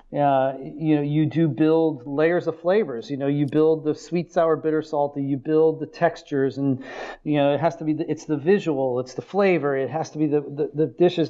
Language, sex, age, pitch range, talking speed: English, male, 40-59, 140-165 Hz, 235 wpm